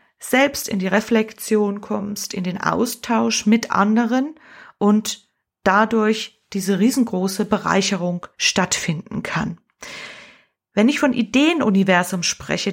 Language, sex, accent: German, female, German